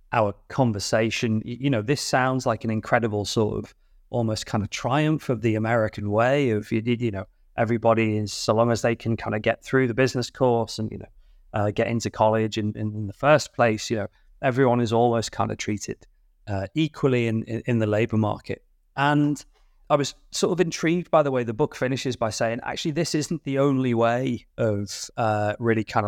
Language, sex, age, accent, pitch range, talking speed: English, male, 30-49, British, 110-135 Hz, 200 wpm